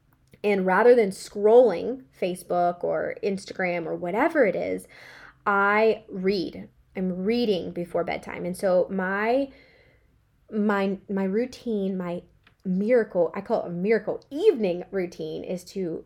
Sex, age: female, 20-39